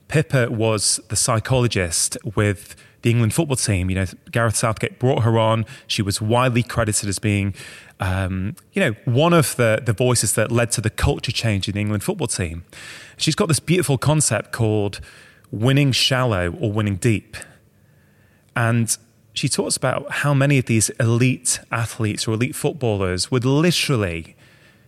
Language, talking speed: English, 160 wpm